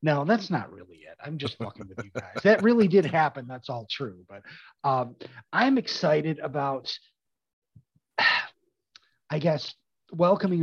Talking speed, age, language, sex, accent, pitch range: 145 wpm, 30-49, English, male, American, 130-175 Hz